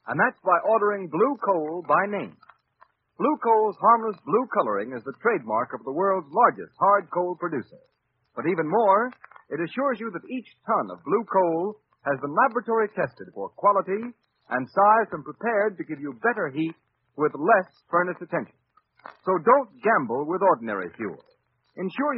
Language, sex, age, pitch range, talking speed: English, male, 50-69, 145-215 Hz, 165 wpm